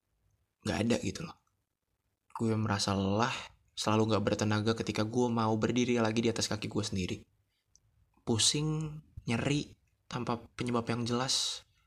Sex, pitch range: male, 100-115 Hz